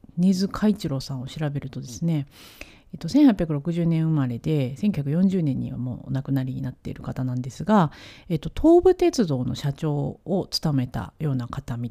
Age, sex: 40-59, female